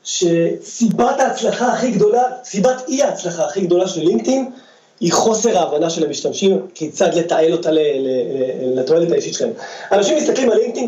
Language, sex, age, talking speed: Hebrew, male, 30-49, 140 wpm